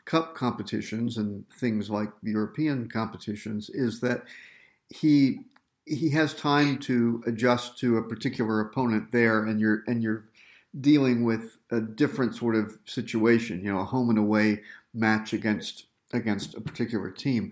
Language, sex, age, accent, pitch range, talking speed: English, male, 50-69, American, 110-130 Hz, 145 wpm